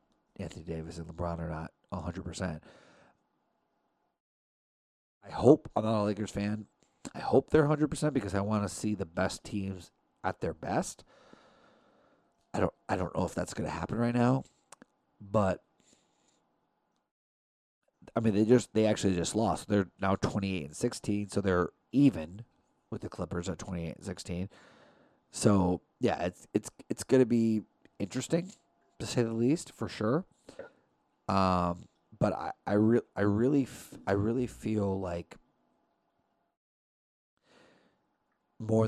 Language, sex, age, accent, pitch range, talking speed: English, male, 30-49, American, 90-110 Hz, 150 wpm